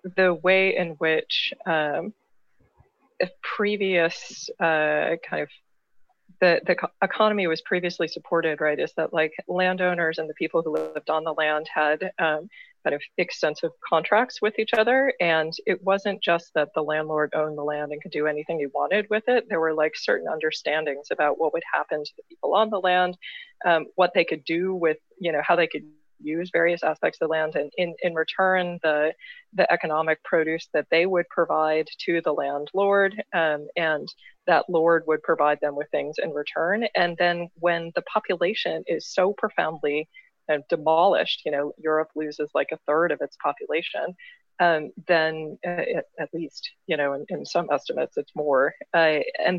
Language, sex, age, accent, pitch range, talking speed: English, female, 20-39, American, 155-195 Hz, 180 wpm